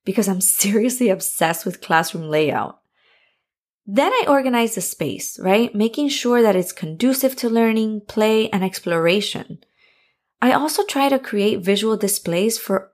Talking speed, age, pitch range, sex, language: 145 wpm, 20-39, 190-250 Hz, female, English